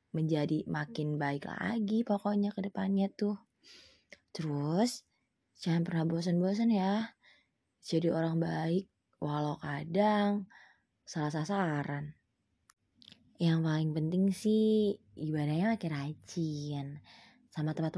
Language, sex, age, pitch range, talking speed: Indonesian, female, 20-39, 160-205 Hz, 95 wpm